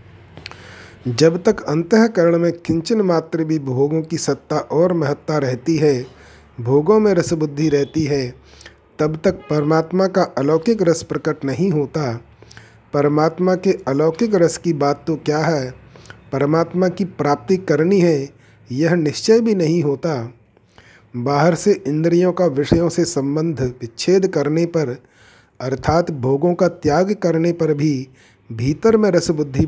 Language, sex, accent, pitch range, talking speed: Hindi, male, native, 130-170 Hz, 135 wpm